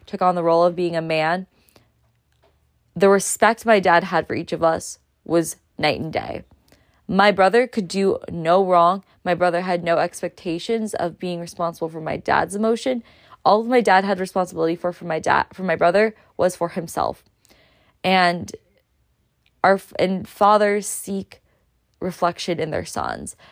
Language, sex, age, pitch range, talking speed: English, female, 20-39, 165-195 Hz, 165 wpm